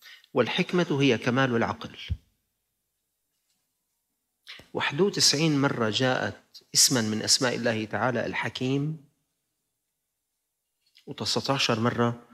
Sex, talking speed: male, 75 wpm